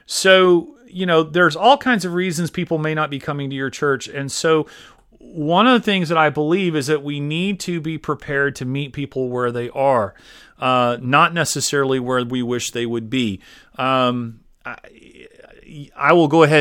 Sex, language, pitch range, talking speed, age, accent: male, English, 125-155 Hz, 190 wpm, 40-59, American